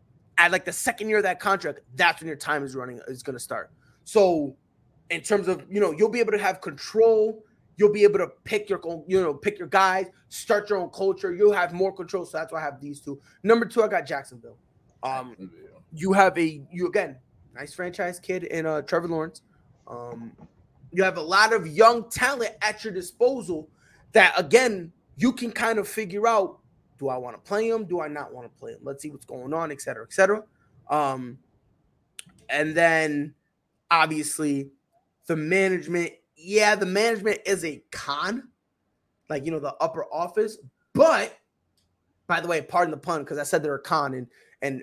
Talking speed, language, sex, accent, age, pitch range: 195 wpm, English, male, American, 20-39, 140-210 Hz